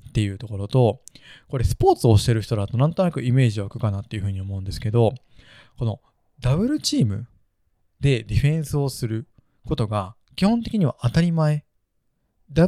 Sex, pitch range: male, 110-140 Hz